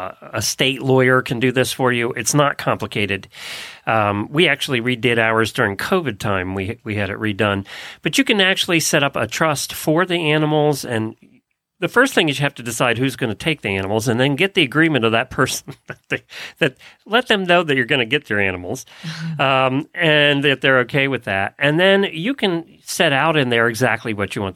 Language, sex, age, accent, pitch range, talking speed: English, male, 40-59, American, 110-155 Hz, 215 wpm